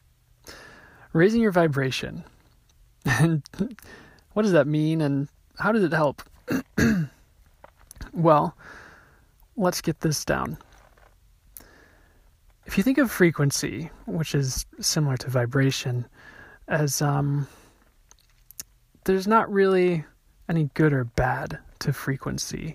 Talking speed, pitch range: 100 wpm, 130-180 Hz